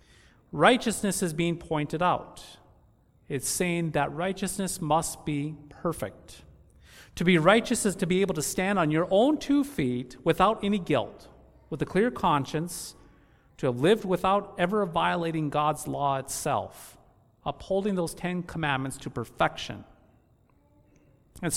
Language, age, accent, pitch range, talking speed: English, 40-59, American, 130-180 Hz, 135 wpm